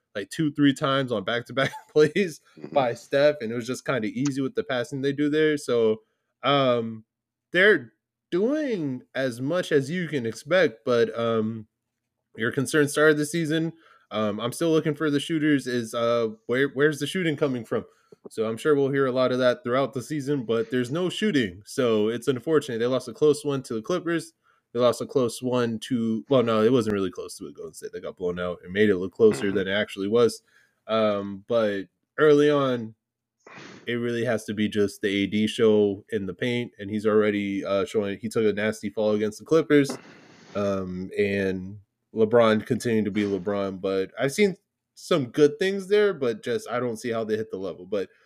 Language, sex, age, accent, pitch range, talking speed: English, male, 20-39, American, 110-145 Hz, 205 wpm